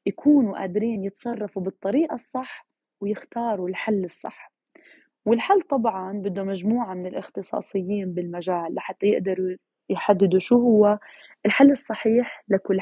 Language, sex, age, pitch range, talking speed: Arabic, female, 20-39, 190-260 Hz, 110 wpm